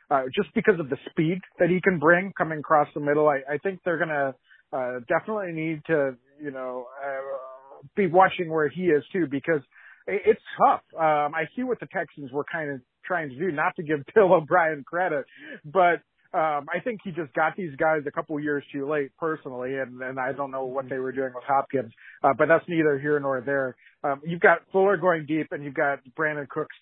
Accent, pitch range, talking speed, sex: American, 135-165 Hz, 215 wpm, male